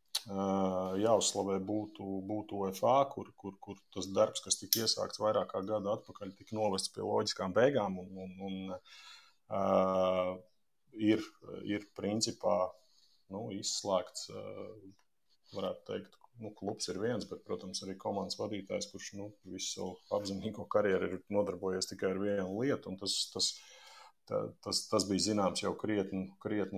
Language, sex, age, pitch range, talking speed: English, male, 30-49, 95-115 Hz, 140 wpm